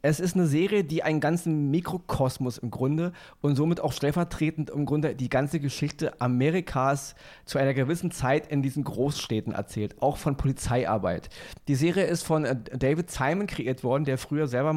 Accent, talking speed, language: German, 170 wpm, German